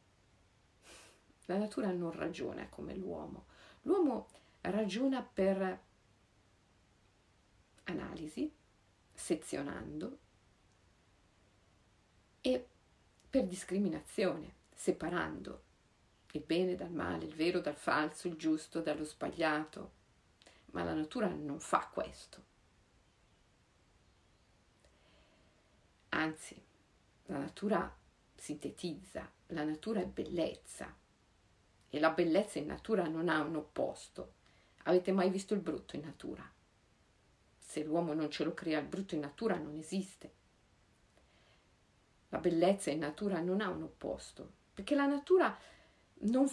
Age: 50-69